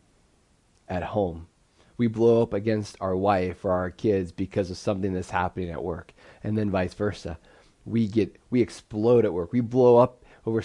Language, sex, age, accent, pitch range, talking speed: English, male, 30-49, American, 95-115 Hz, 180 wpm